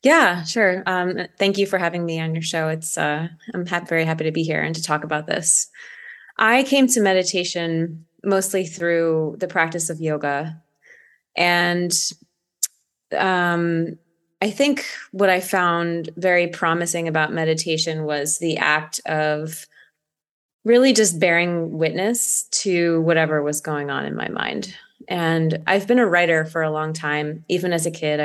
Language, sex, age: English, female, 20-39